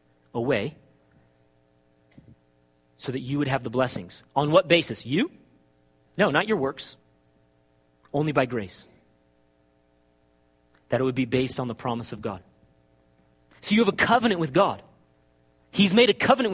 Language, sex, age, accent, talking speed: English, male, 30-49, American, 145 wpm